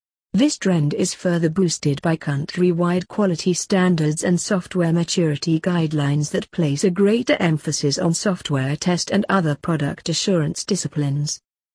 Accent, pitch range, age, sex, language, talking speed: British, 150-185 Hz, 50-69, female, English, 135 wpm